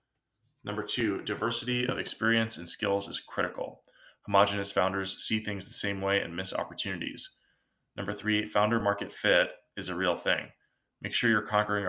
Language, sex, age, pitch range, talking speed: English, male, 20-39, 95-115 Hz, 160 wpm